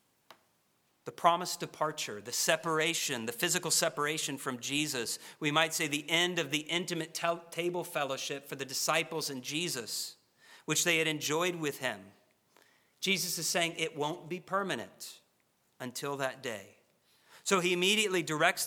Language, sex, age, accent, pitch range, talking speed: English, male, 50-69, American, 130-170 Hz, 145 wpm